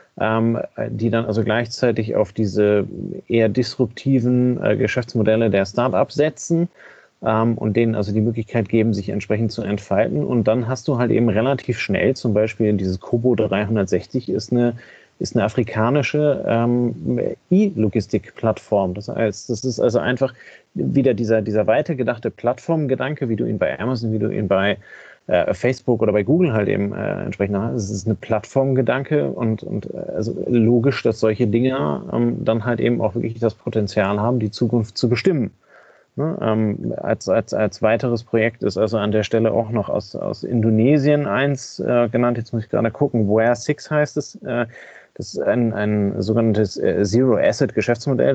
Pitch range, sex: 110-125 Hz, male